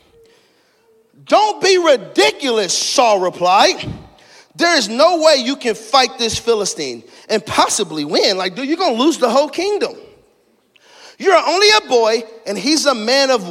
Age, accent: 40-59, American